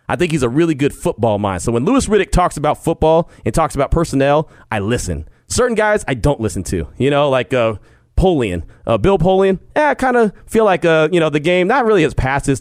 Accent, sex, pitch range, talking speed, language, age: American, male, 120-185 Hz, 240 wpm, English, 30-49